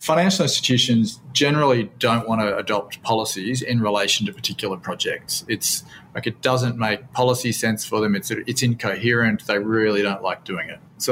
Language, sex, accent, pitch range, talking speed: English, male, Australian, 105-125 Hz, 165 wpm